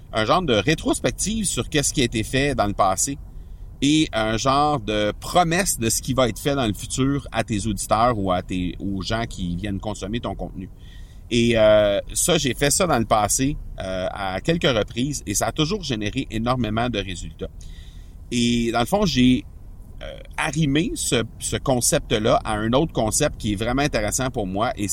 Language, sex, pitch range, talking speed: French, male, 95-130 Hz, 195 wpm